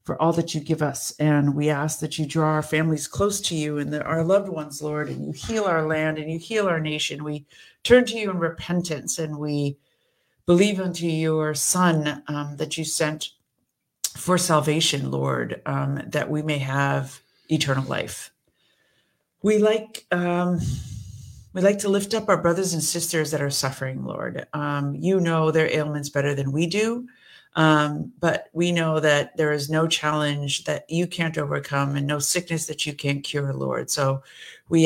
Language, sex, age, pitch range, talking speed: English, female, 50-69, 140-165 Hz, 180 wpm